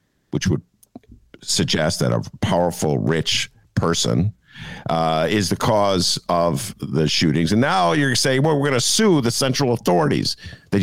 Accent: American